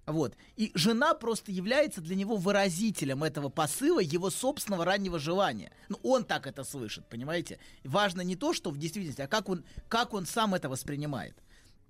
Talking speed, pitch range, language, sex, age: 170 wpm, 150-205 Hz, Russian, male, 30-49